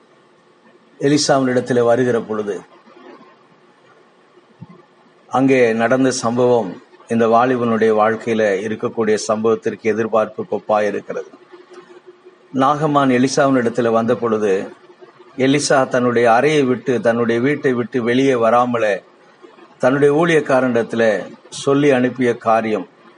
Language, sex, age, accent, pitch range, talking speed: Tamil, male, 50-69, native, 115-140 Hz, 80 wpm